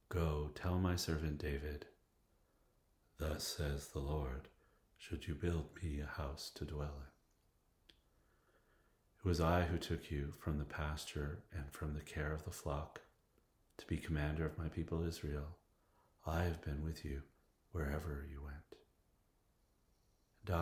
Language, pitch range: English, 75-90 Hz